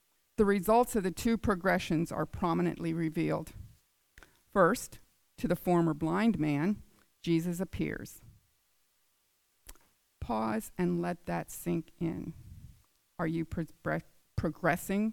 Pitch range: 165-205 Hz